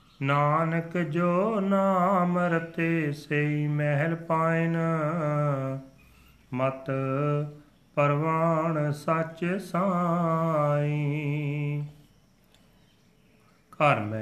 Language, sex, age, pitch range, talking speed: Punjabi, male, 40-59, 130-165 Hz, 50 wpm